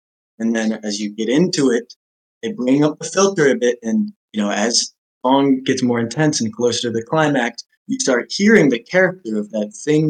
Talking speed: 215 wpm